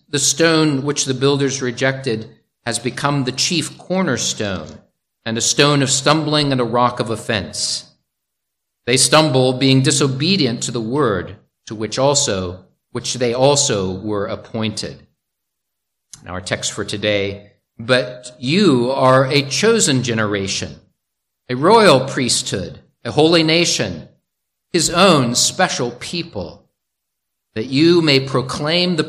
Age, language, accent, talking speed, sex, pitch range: 50-69, English, American, 130 wpm, male, 105-150 Hz